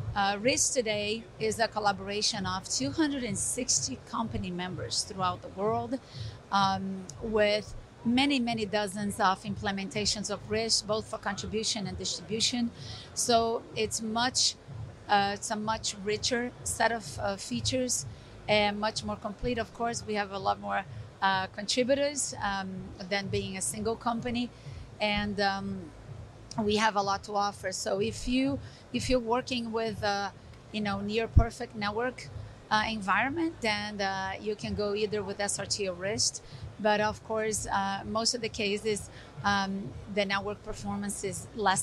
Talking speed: 150 wpm